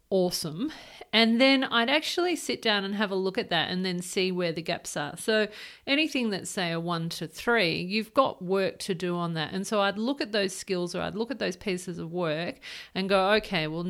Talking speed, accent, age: 235 wpm, Australian, 40-59